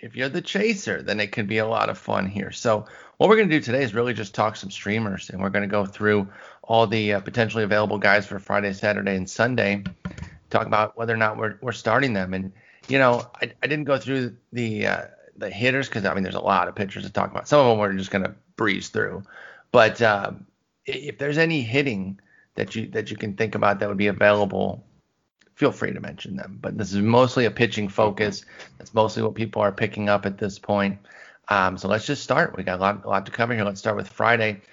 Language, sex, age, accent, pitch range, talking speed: English, male, 30-49, American, 100-125 Hz, 245 wpm